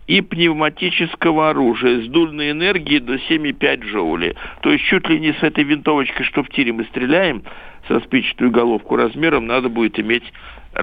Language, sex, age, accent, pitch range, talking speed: Russian, male, 60-79, native, 145-190 Hz, 160 wpm